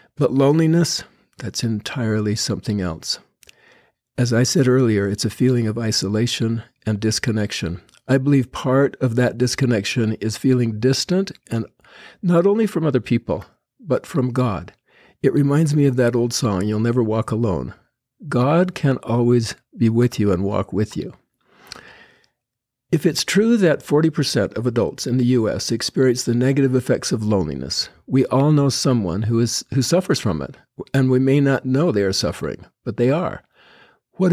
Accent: American